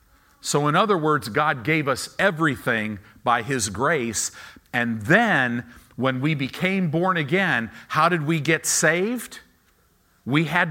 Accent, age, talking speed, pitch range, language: American, 50-69, 140 wpm, 120-185 Hz, English